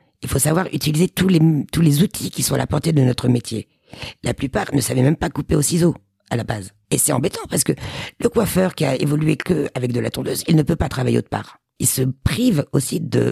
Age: 50-69